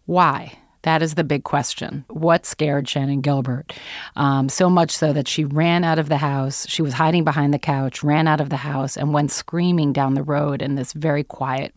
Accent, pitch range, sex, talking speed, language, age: American, 140-160 Hz, female, 215 wpm, English, 30-49